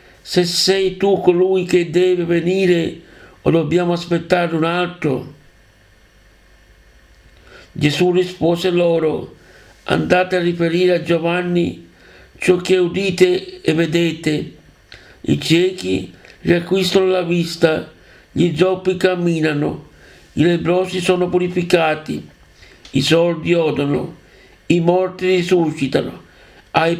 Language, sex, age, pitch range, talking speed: Italian, male, 60-79, 145-175 Hz, 100 wpm